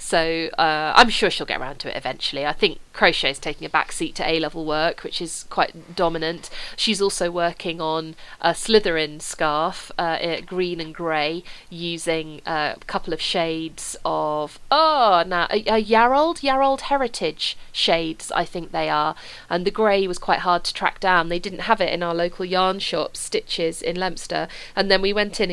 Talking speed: 185 wpm